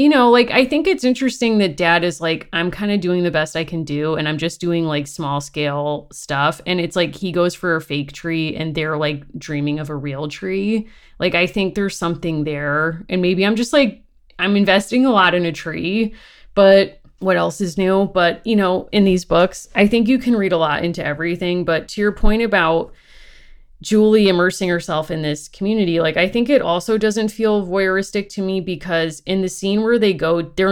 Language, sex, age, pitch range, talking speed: English, female, 30-49, 155-190 Hz, 220 wpm